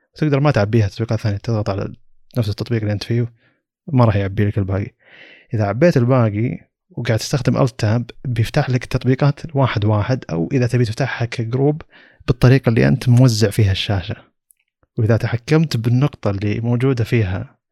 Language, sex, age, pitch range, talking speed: Arabic, male, 30-49, 105-125 Hz, 150 wpm